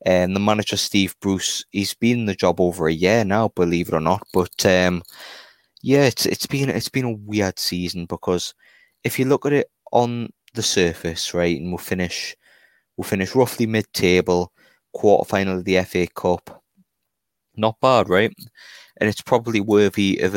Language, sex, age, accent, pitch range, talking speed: English, male, 20-39, British, 90-110 Hz, 175 wpm